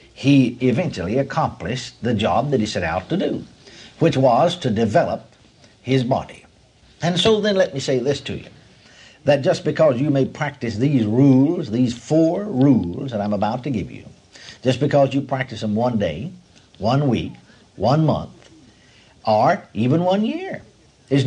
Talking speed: 165 wpm